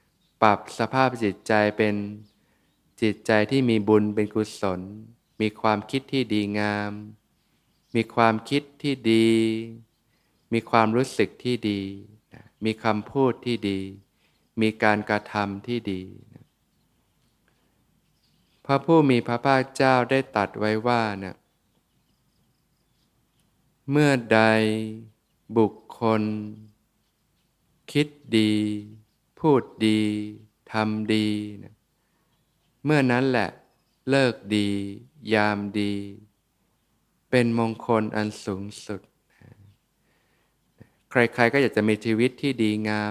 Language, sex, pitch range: Thai, male, 105-115 Hz